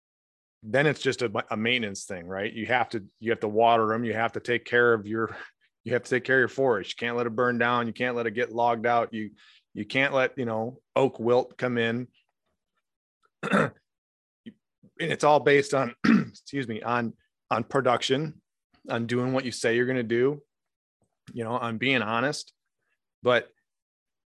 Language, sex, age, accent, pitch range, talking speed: English, male, 30-49, American, 110-125 Hz, 195 wpm